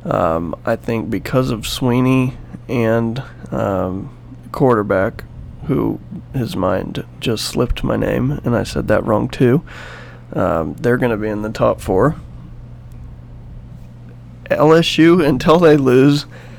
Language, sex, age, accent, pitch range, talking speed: English, male, 30-49, American, 110-135 Hz, 125 wpm